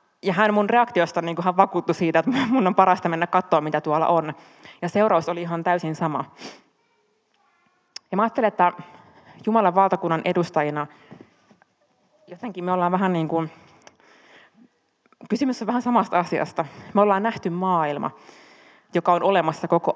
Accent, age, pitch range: native, 20-39, 160-195 Hz